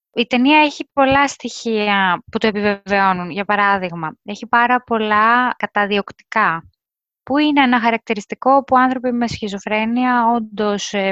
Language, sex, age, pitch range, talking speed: Greek, female, 20-39, 205-255 Hz, 125 wpm